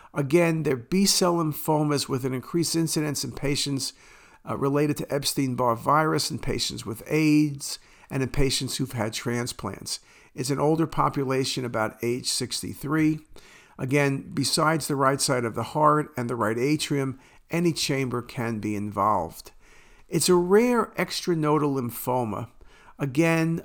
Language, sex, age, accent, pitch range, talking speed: English, male, 50-69, American, 130-160 Hz, 145 wpm